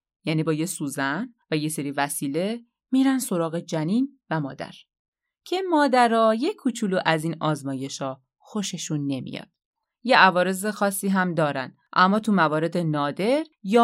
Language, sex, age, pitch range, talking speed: Persian, female, 30-49, 155-210 Hz, 140 wpm